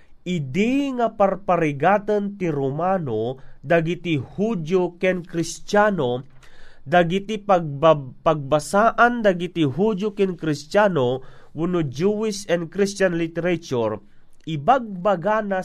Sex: male